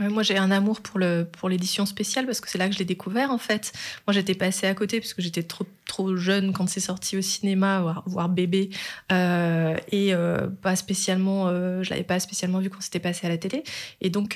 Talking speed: 245 wpm